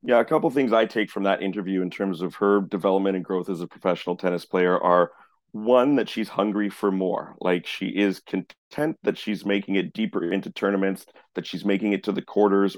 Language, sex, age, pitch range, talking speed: English, male, 30-49, 95-105 Hz, 220 wpm